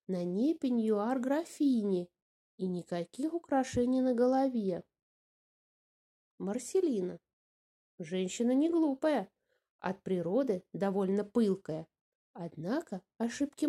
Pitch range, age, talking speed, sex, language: 195-280 Hz, 20-39, 80 wpm, female, English